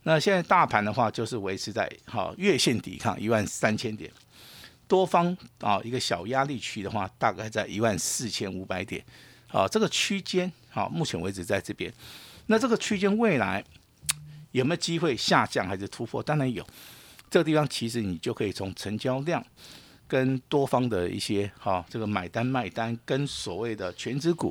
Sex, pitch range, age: male, 105-145 Hz, 50-69